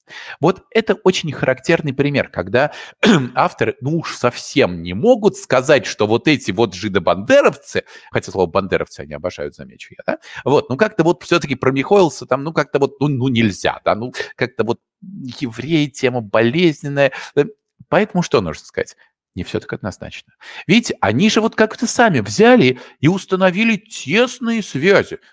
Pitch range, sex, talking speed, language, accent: 125-200 Hz, male, 150 wpm, Russian, native